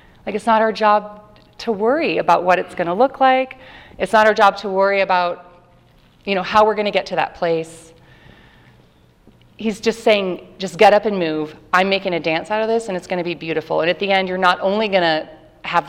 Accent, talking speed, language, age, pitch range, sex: American, 235 wpm, English, 30-49, 170-220 Hz, female